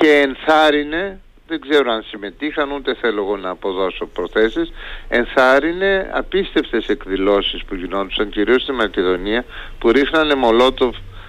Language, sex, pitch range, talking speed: Greek, male, 110-165 Hz, 115 wpm